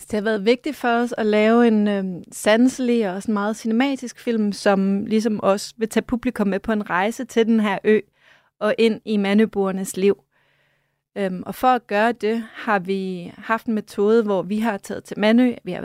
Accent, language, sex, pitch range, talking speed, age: native, Danish, female, 195-230 Hz, 205 wpm, 30-49